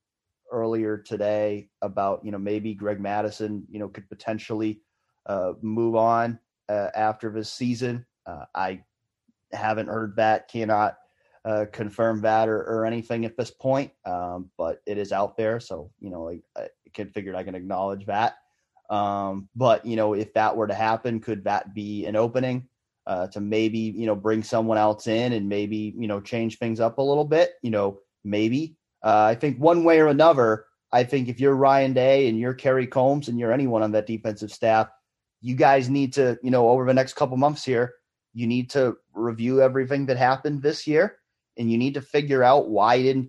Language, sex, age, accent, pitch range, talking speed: English, male, 30-49, American, 105-135 Hz, 195 wpm